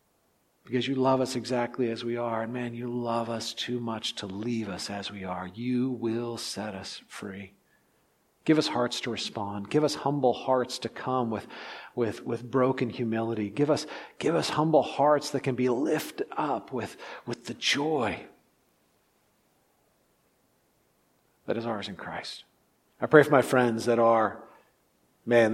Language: English